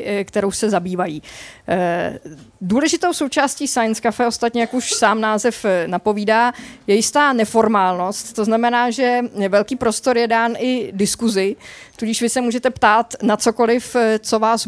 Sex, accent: female, native